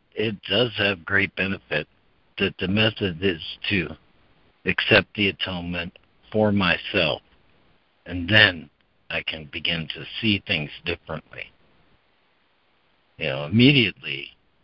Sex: male